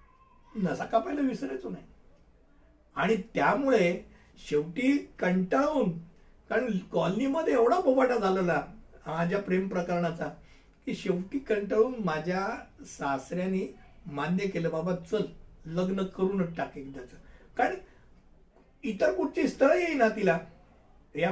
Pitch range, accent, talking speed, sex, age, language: 175-230 Hz, native, 80 wpm, male, 60-79, Hindi